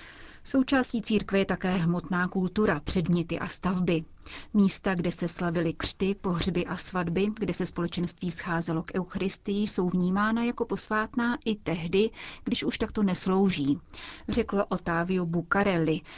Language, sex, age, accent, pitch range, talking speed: Czech, female, 30-49, native, 175-200 Hz, 135 wpm